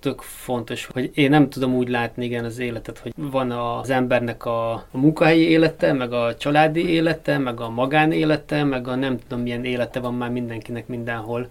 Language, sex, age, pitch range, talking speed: Hungarian, male, 20-39, 120-130 Hz, 180 wpm